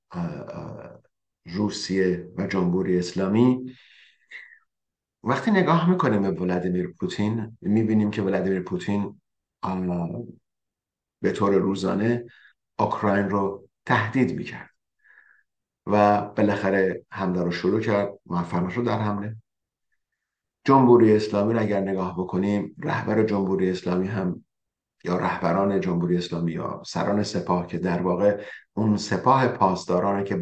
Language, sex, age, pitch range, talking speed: Persian, male, 50-69, 90-110 Hz, 105 wpm